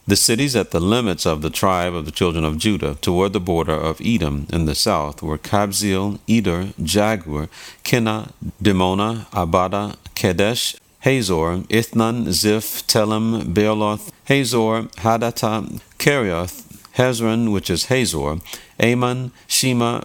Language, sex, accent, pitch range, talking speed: English, male, American, 95-115 Hz, 130 wpm